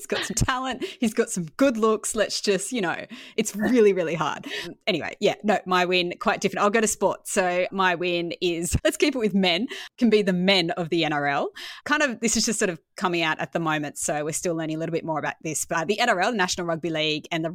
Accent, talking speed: Australian, 255 wpm